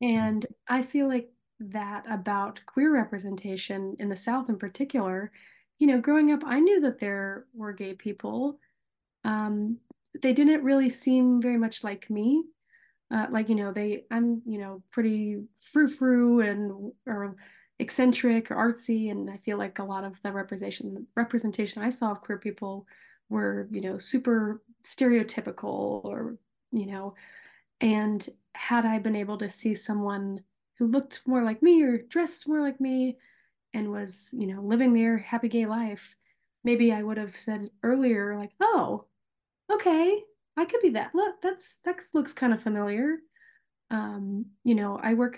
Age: 20-39